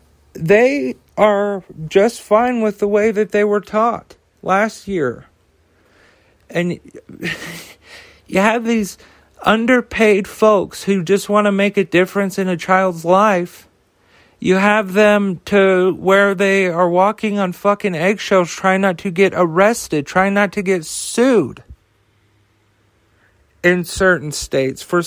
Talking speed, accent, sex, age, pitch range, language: 130 wpm, American, male, 40-59, 165-210 Hz, English